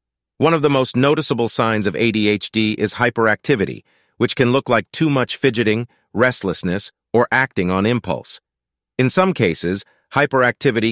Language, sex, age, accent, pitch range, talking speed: English, male, 40-59, American, 100-135 Hz, 145 wpm